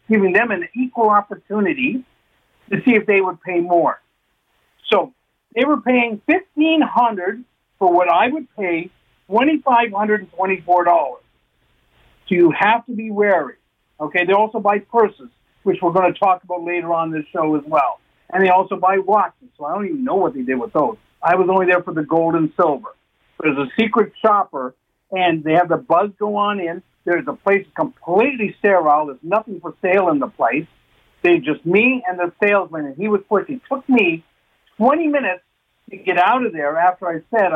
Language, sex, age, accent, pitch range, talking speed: English, male, 60-79, American, 175-225 Hz, 190 wpm